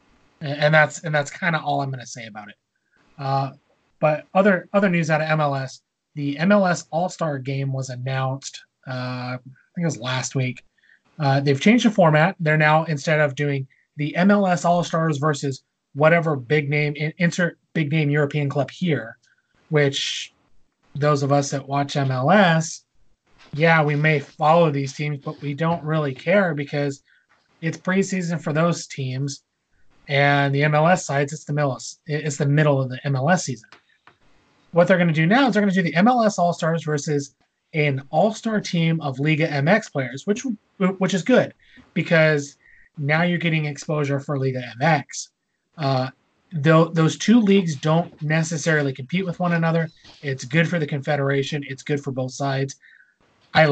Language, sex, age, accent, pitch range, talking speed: English, male, 30-49, American, 140-165 Hz, 170 wpm